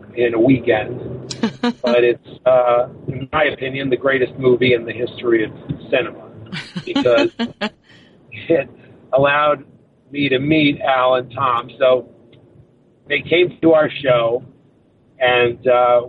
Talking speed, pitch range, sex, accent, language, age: 125 wpm, 125-165 Hz, male, American, English, 50-69